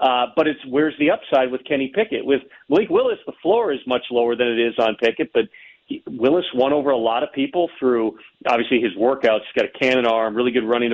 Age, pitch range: 40-59, 125-155 Hz